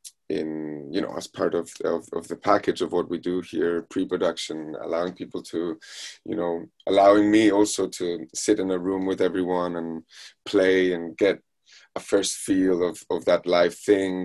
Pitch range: 85-95 Hz